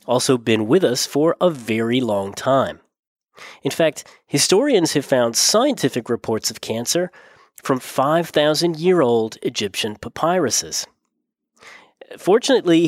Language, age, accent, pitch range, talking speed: English, 30-49, American, 120-170 Hz, 105 wpm